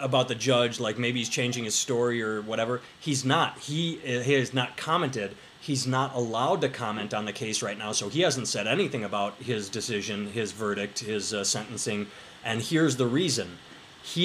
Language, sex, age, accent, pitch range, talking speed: English, male, 30-49, American, 115-145 Hz, 200 wpm